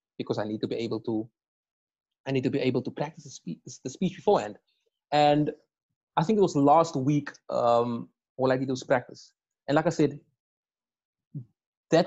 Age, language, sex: 30-49, English, male